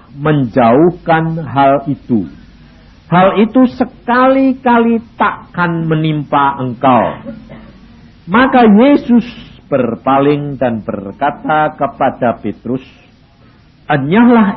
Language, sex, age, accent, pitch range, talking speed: Indonesian, male, 50-69, native, 130-215 Hz, 70 wpm